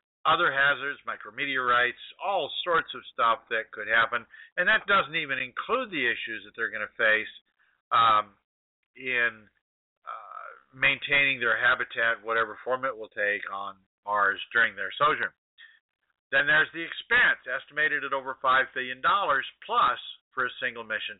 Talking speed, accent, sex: 145 wpm, American, male